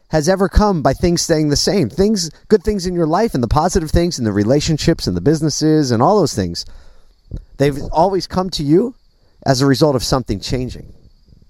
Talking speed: 205 wpm